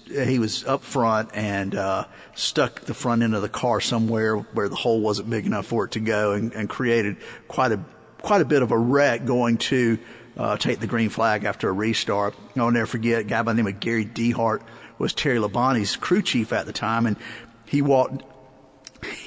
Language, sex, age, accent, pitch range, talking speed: English, male, 50-69, American, 115-140 Hz, 210 wpm